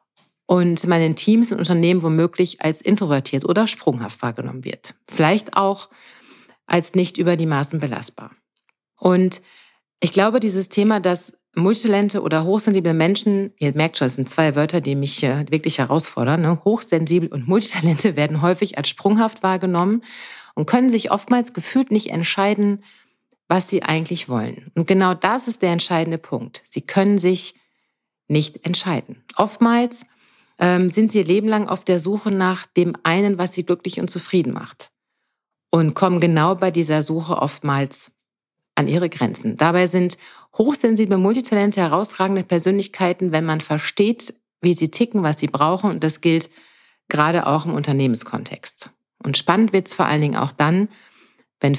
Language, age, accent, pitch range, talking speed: German, 40-59, German, 160-200 Hz, 155 wpm